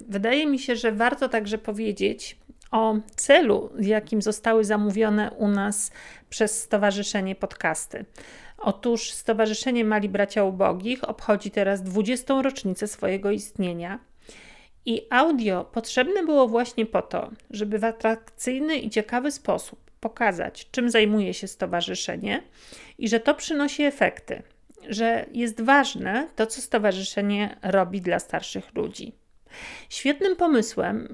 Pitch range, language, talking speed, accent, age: 205-240 Hz, Polish, 120 wpm, native, 50-69